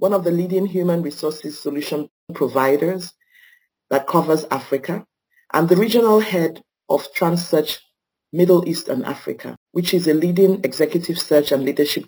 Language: English